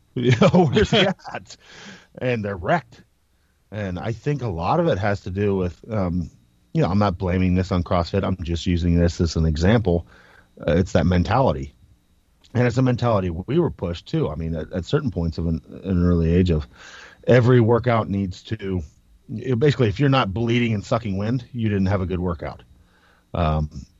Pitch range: 85-120 Hz